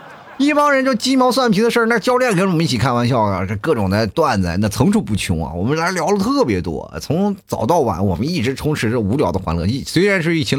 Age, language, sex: 30-49, Chinese, male